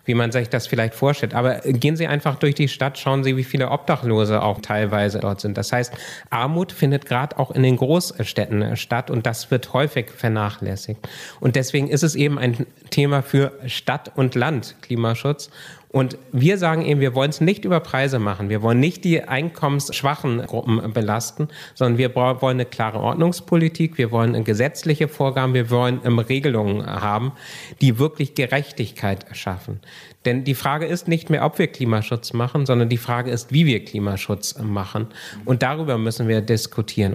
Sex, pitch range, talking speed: male, 115-145 Hz, 175 wpm